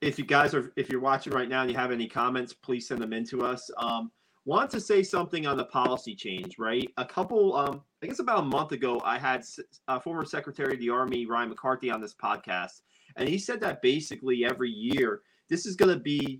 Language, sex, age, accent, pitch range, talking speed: English, male, 30-49, American, 120-165 Hz, 235 wpm